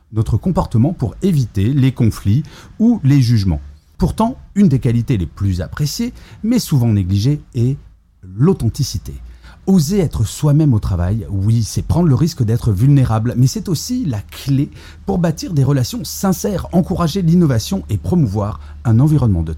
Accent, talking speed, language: French, 155 wpm, French